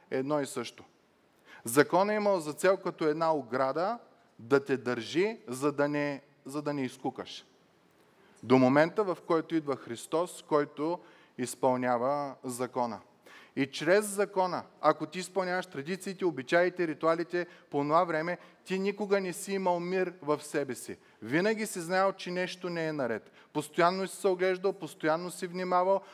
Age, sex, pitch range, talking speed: 30-49, male, 145-190 Hz, 150 wpm